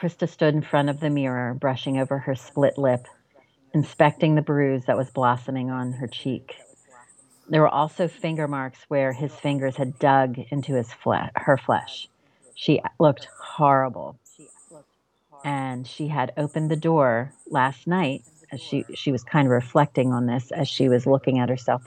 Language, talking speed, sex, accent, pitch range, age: English, 165 wpm, female, American, 130-150 Hz, 40-59